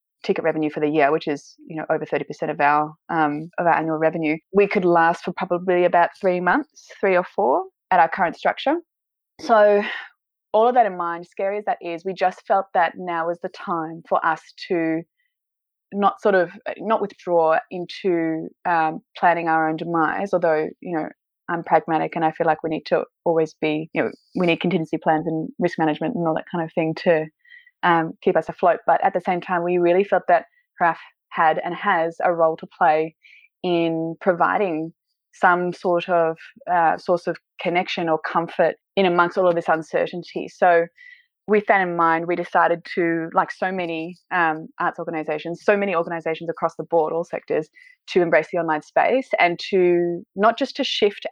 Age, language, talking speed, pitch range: 20-39, English, 195 wpm, 160-185 Hz